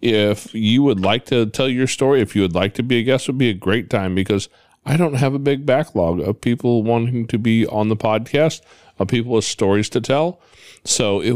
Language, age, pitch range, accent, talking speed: English, 40-59, 95-125 Hz, American, 240 wpm